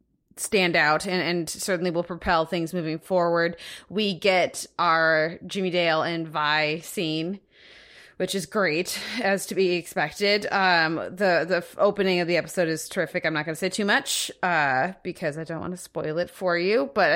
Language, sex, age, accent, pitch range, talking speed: English, female, 20-39, American, 165-195 Hz, 180 wpm